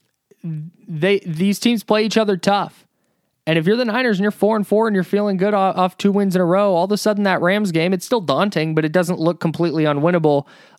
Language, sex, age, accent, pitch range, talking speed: English, male, 20-39, American, 150-190 Hz, 245 wpm